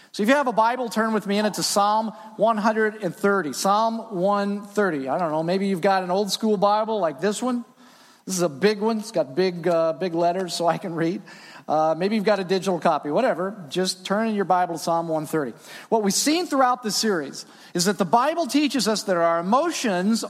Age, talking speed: 40-59, 220 wpm